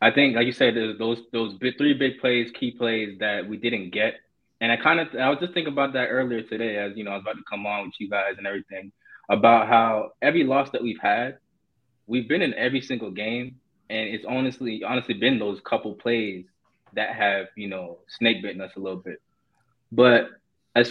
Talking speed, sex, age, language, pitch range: 220 wpm, male, 20-39, English, 110-130 Hz